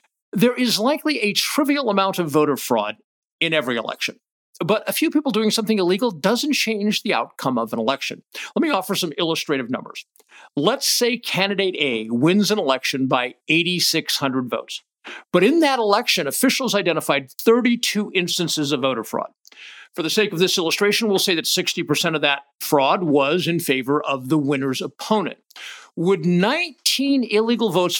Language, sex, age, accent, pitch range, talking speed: English, male, 50-69, American, 160-235 Hz, 165 wpm